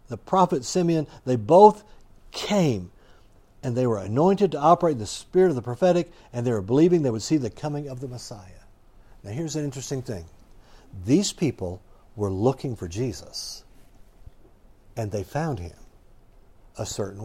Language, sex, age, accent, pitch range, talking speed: English, male, 60-79, American, 105-145 Hz, 165 wpm